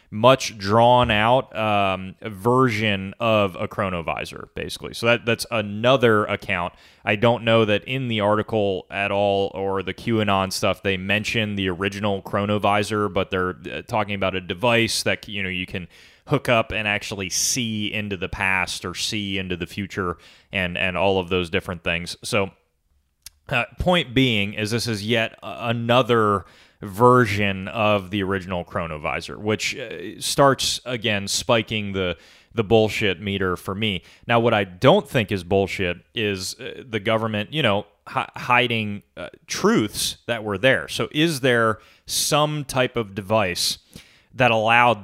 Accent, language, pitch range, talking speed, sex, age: American, English, 95-115 Hz, 155 wpm, male, 30-49